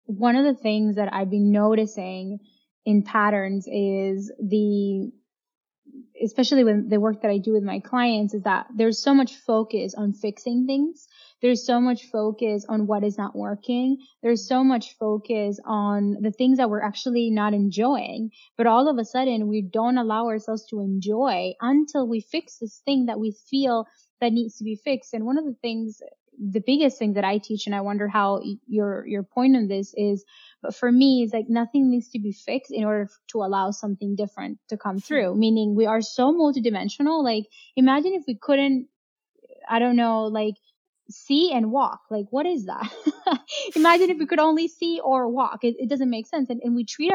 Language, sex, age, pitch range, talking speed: English, female, 10-29, 210-260 Hz, 195 wpm